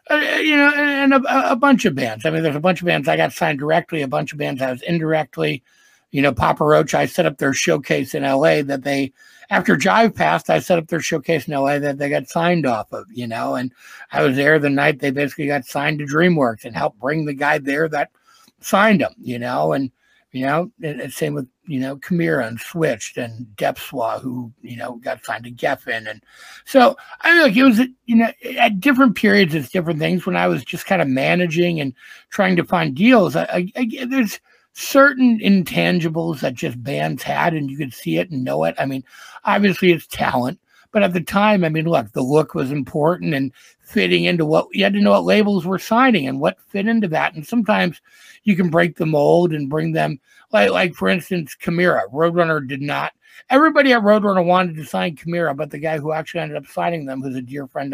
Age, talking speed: 60-79, 230 wpm